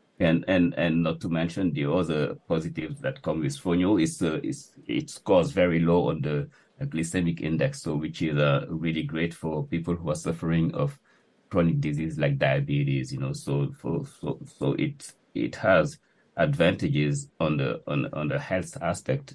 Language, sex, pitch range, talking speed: English, male, 80-100 Hz, 185 wpm